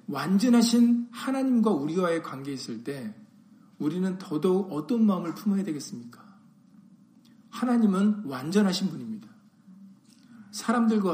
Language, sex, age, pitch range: Korean, male, 50-69, 190-230 Hz